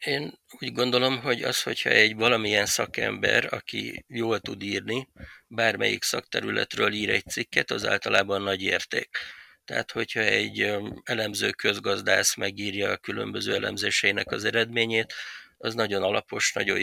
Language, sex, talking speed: Hungarian, male, 130 wpm